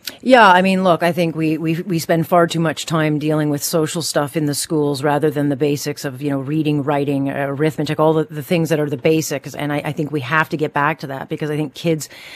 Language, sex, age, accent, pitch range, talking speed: English, female, 40-59, American, 145-170 Hz, 260 wpm